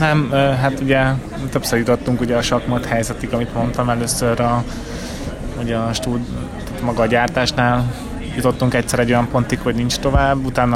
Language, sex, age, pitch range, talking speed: Hungarian, male, 20-39, 110-125 Hz, 150 wpm